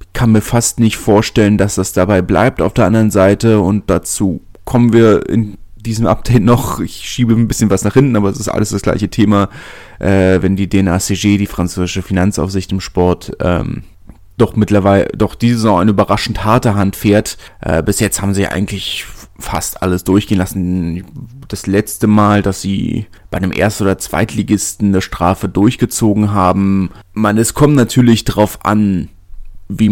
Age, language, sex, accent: 30-49, German, male, German